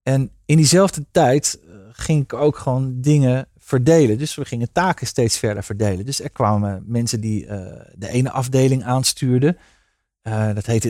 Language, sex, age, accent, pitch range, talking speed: Dutch, male, 40-59, Dutch, 110-140 Hz, 165 wpm